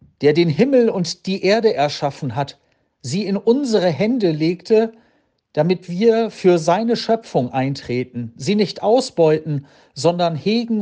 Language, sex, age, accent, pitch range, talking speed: German, male, 50-69, German, 145-195 Hz, 135 wpm